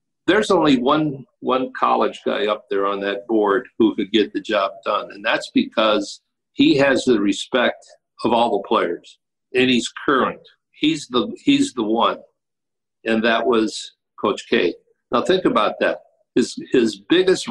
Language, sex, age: English, male, 60-79